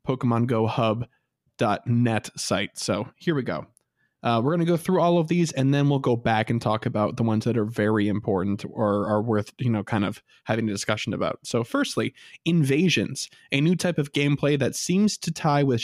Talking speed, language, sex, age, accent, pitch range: 210 wpm, English, male, 20-39, American, 110-145 Hz